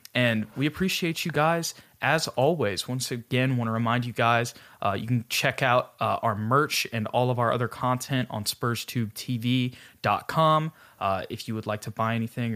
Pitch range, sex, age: 115-145 Hz, male, 20-39